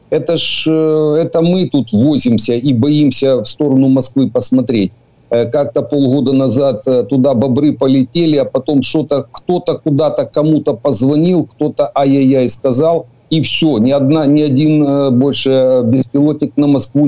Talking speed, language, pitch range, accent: 135 wpm, Ukrainian, 125-150 Hz, native